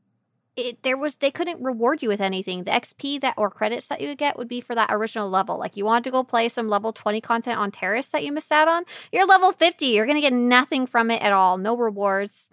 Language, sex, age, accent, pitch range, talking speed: English, female, 20-39, American, 195-245 Hz, 260 wpm